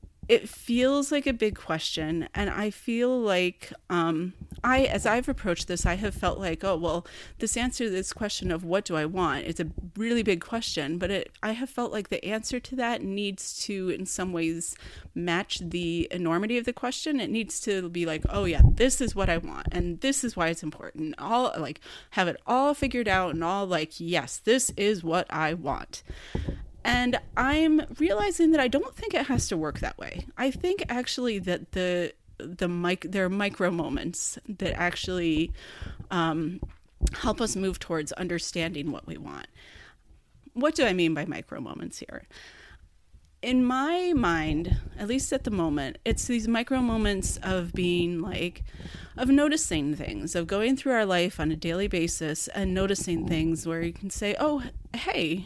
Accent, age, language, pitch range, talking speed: American, 30-49, English, 170-245 Hz, 185 wpm